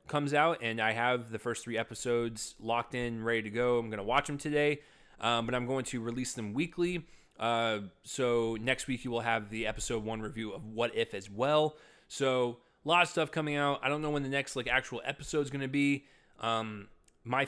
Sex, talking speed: male, 225 wpm